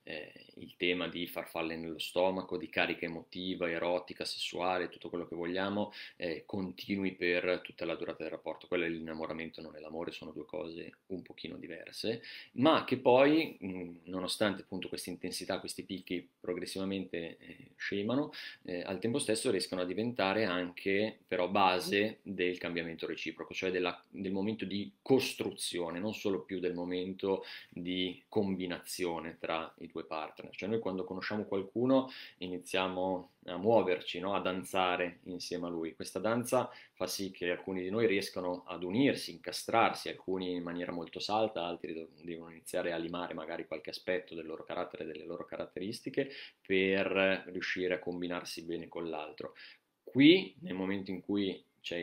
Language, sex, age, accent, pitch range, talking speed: Italian, male, 30-49, native, 90-95 Hz, 155 wpm